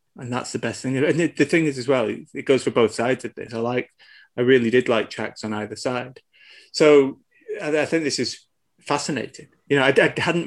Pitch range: 110-135 Hz